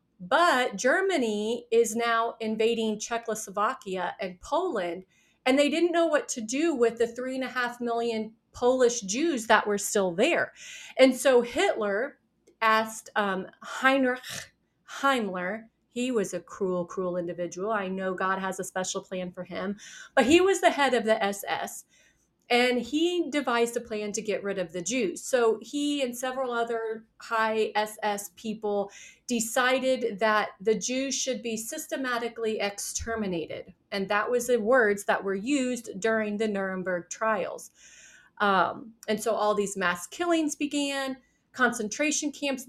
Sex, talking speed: female, 150 wpm